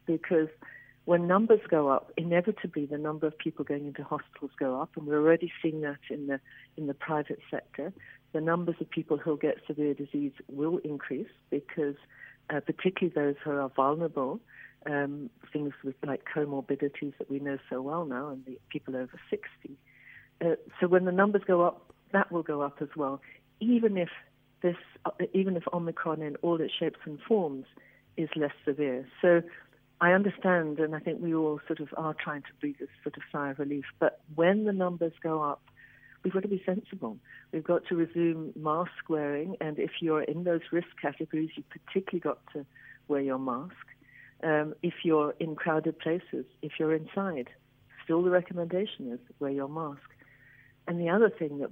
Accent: British